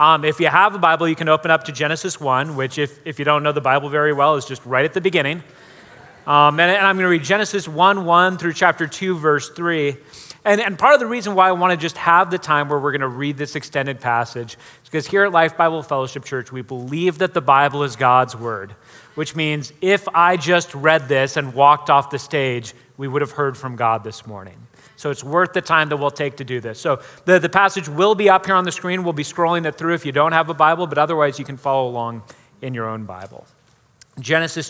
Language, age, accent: English, 30-49, American